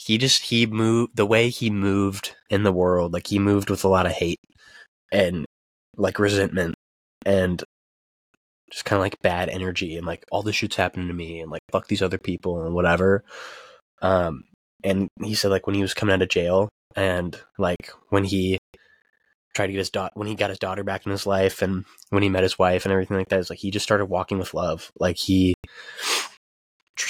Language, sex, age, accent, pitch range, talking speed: English, male, 20-39, American, 90-105 Hz, 215 wpm